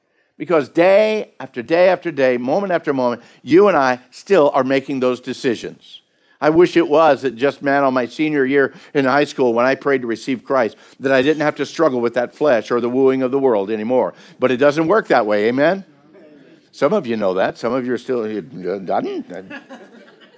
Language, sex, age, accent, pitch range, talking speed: English, male, 60-79, American, 120-160 Hz, 210 wpm